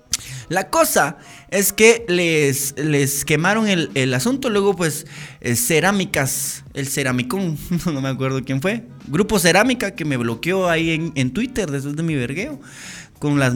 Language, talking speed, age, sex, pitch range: Spanish, 150 wpm, 20-39, male, 125-165 Hz